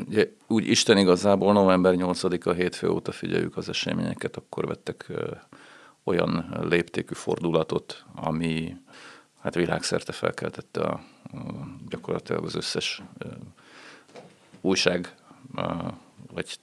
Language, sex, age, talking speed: Hungarian, male, 40-59, 85 wpm